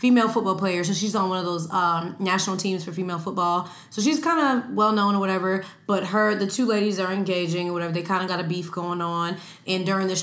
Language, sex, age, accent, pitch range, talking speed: English, female, 20-39, American, 175-210 Hz, 250 wpm